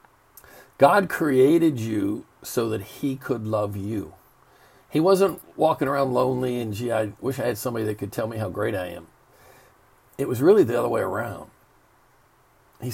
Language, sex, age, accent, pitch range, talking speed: English, male, 50-69, American, 105-135 Hz, 170 wpm